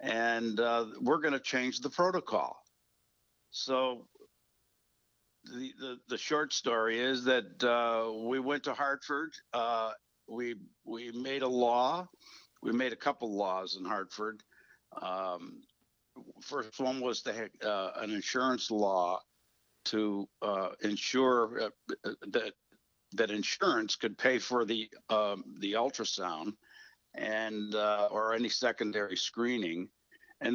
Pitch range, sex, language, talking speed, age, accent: 110-130 Hz, male, English, 125 wpm, 60-79, American